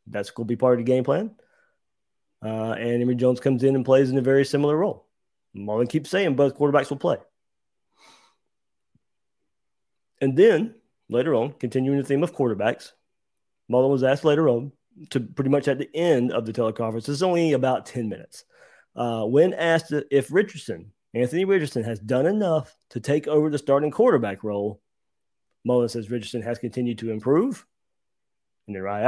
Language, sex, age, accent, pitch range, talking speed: English, male, 30-49, American, 115-150 Hz, 175 wpm